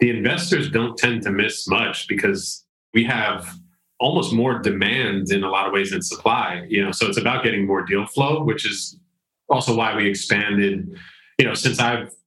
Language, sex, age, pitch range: English, male, 30-49, 100-125 Hz